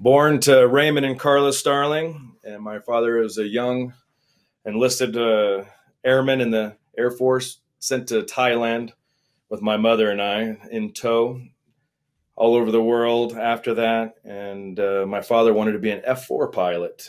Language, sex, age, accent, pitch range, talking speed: English, male, 30-49, American, 105-130 Hz, 160 wpm